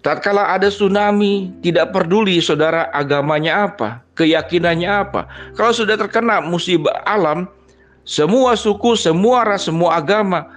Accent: native